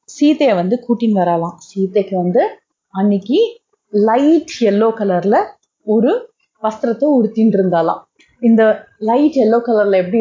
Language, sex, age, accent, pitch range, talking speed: Tamil, female, 30-49, native, 185-265 Hz, 110 wpm